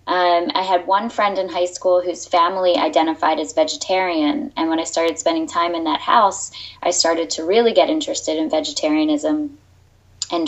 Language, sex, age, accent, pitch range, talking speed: English, female, 20-39, American, 165-270 Hz, 180 wpm